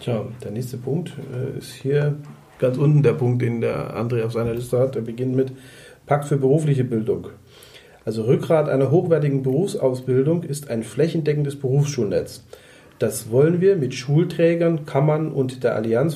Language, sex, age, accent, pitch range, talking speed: German, male, 40-59, German, 125-155 Hz, 155 wpm